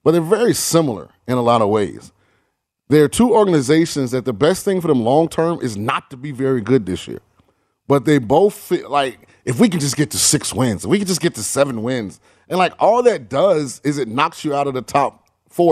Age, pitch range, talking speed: 30-49, 125-160 Hz, 235 wpm